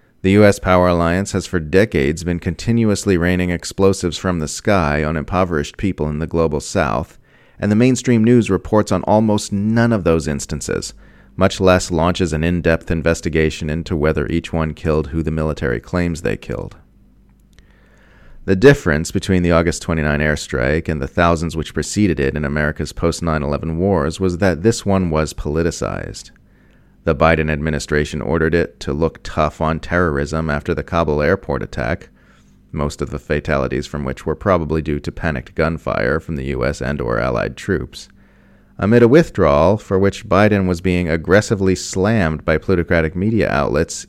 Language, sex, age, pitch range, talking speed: English, male, 30-49, 75-95 Hz, 165 wpm